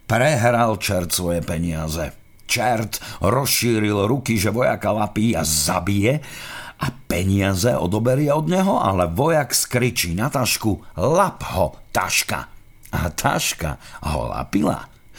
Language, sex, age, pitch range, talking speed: Slovak, male, 50-69, 90-130 Hz, 115 wpm